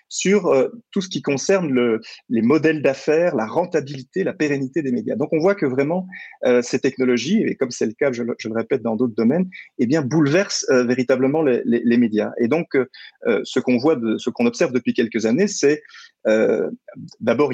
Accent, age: French, 30-49